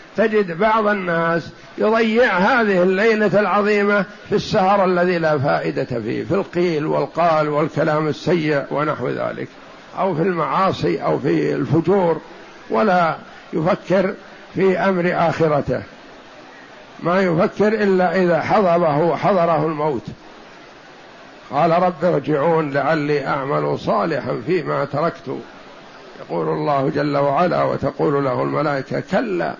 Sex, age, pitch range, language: male, 60-79, 155-175 Hz, Arabic